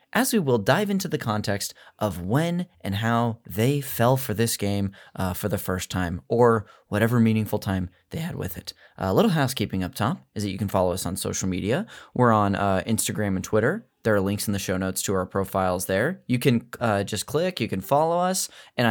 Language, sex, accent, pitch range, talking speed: English, male, American, 100-140 Hz, 225 wpm